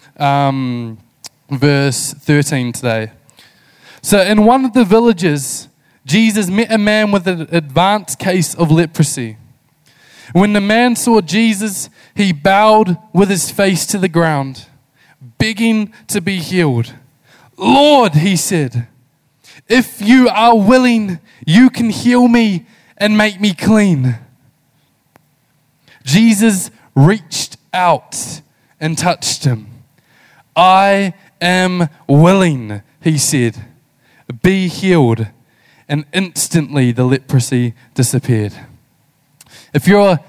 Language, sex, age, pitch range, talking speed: English, male, 20-39, 140-200 Hz, 105 wpm